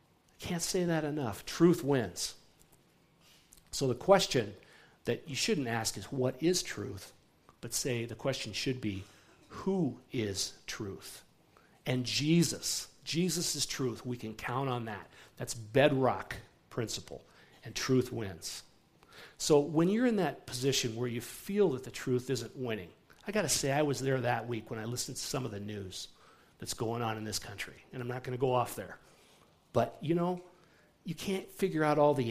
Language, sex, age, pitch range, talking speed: English, male, 50-69, 115-150 Hz, 180 wpm